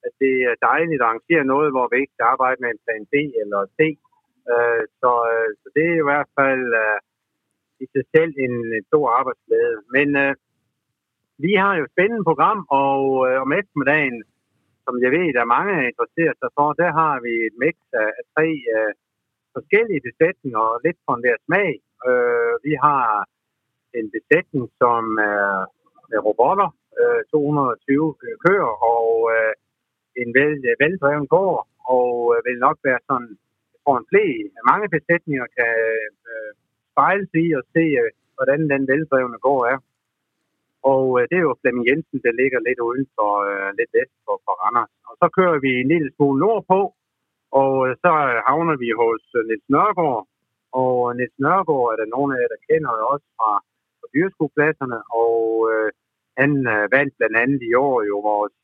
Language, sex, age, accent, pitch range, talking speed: Danish, male, 60-79, native, 120-160 Hz, 175 wpm